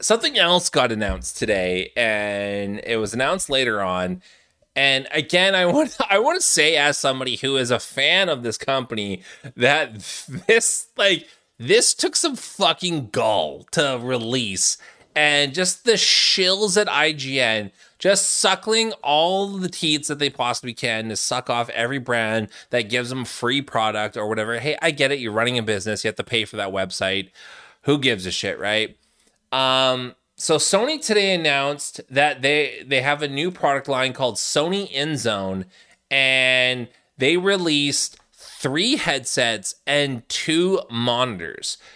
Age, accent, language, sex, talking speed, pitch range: 20-39, American, English, male, 160 wpm, 115-170 Hz